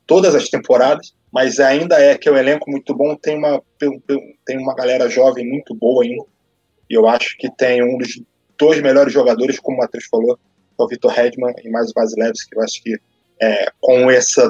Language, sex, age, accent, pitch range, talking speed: English, male, 20-39, Brazilian, 125-150 Hz, 200 wpm